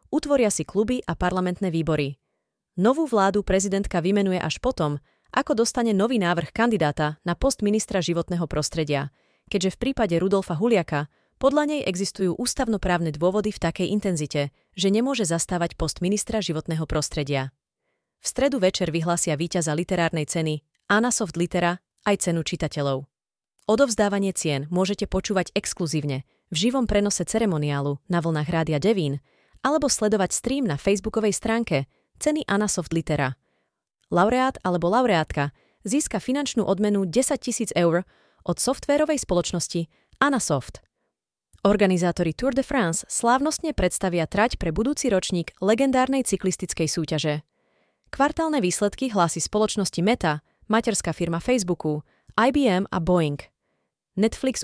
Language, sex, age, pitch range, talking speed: Slovak, female, 30-49, 165-225 Hz, 125 wpm